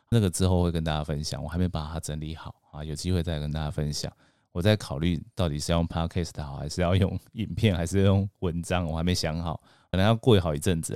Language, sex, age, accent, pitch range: Chinese, male, 30-49, native, 80-100 Hz